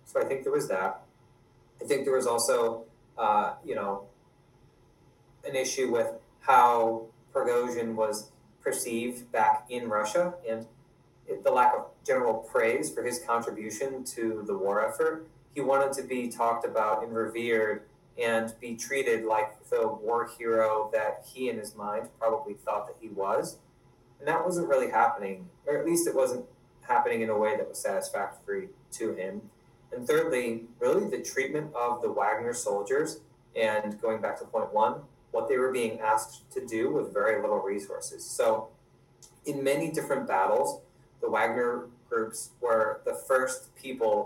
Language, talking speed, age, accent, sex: English, 160 wpm, 30-49, American, male